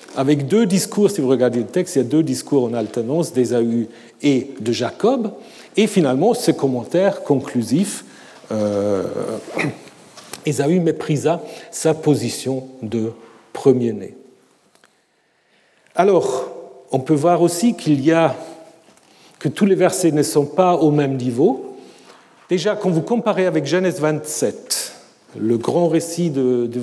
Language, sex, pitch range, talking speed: French, male, 130-180 Hz, 135 wpm